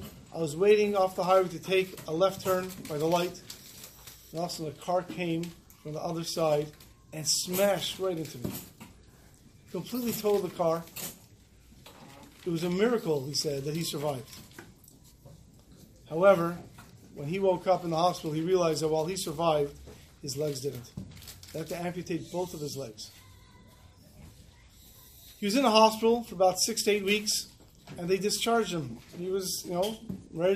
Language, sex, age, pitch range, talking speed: English, male, 40-59, 155-195 Hz, 170 wpm